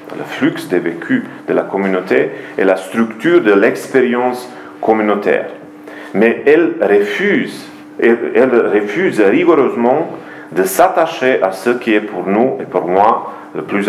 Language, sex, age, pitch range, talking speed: French, male, 40-59, 100-120 Hz, 140 wpm